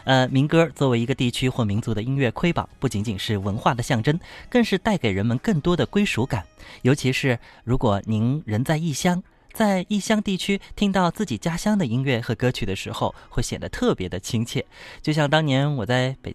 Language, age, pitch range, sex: Chinese, 20-39, 105-145 Hz, male